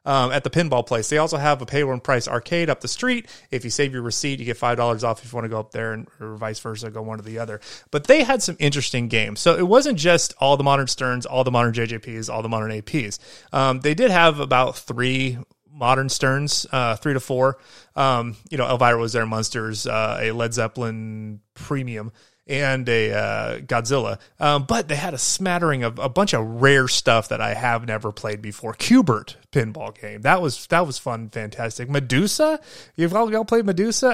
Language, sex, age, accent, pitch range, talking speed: English, male, 30-49, American, 115-155 Hz, 215 wpm